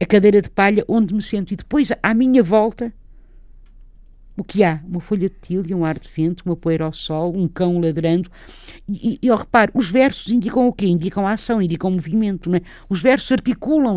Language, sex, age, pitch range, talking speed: Portuguese, female, 50-69, 170-215 Hz, 210 wpm